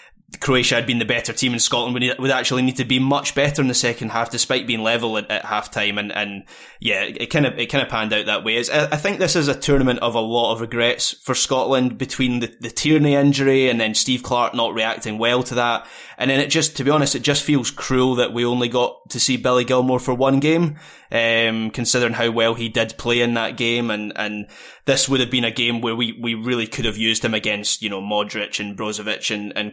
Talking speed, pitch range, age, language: 255 wpm, 115-140 Hz, 20-39, English